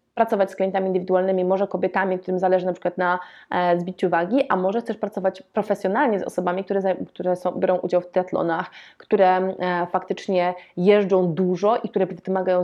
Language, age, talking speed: Polish, 20-39, 160 wpm